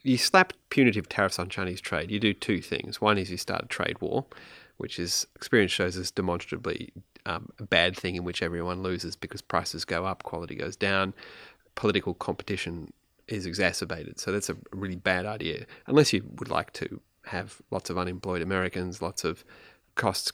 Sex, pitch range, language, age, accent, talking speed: male, 90-110 Hz, English, 30-49, Australian, 185 wpm